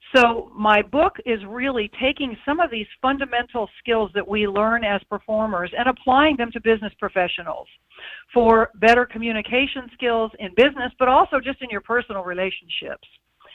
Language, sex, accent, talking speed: English, female, American, 155 wpm